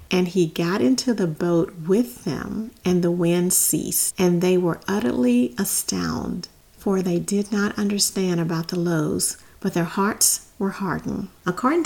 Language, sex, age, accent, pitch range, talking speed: English, female, 40-59, American, 170-210 Hz, 155 wpm